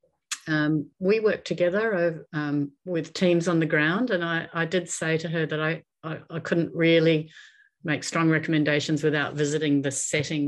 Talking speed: 170 wpm